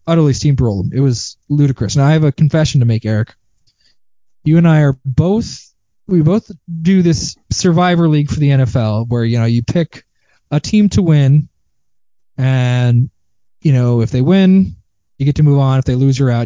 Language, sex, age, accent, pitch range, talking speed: English, male, 20-39, American, 115-155 Hz, 195 wpm